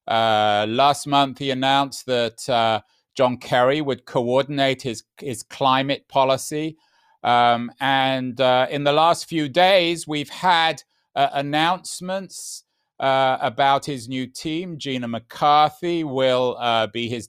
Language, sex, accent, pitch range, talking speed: English, male, British, 130-160 Hz, 130 wpm